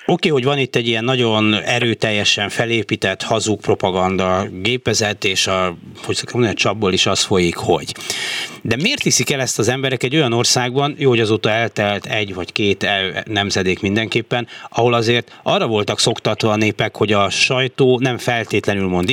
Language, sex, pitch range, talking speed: Hungarian, male, 100-125 Hz, 175 wpm